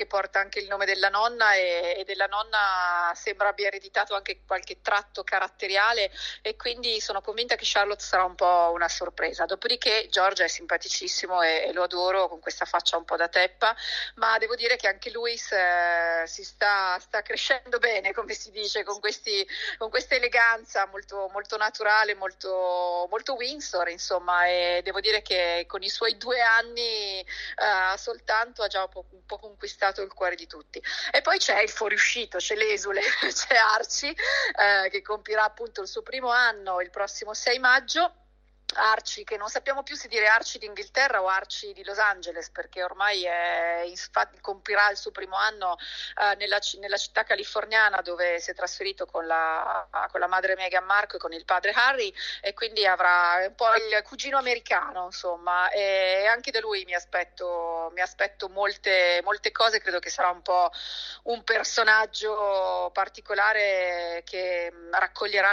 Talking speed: 170 wpm